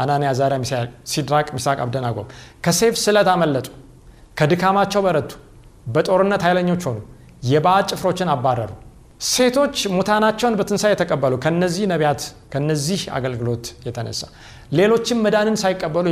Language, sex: Amharic, male